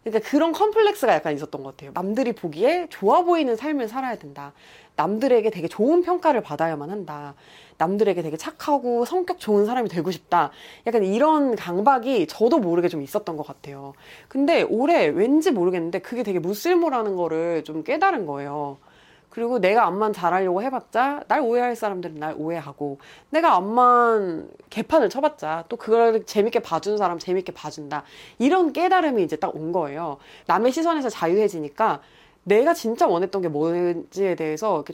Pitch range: 160-255 Hz